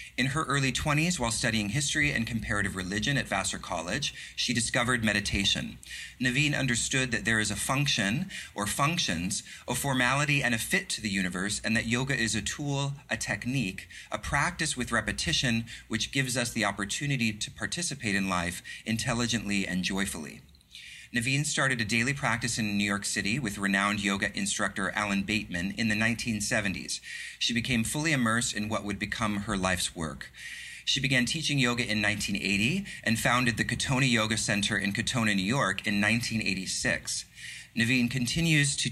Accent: American